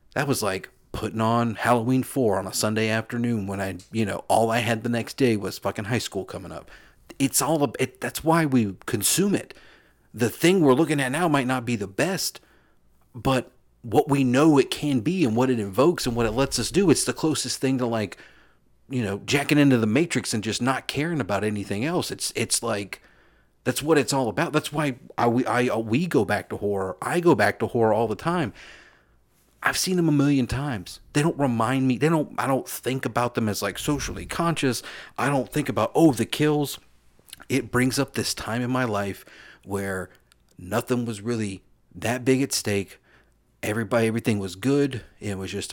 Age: 40-59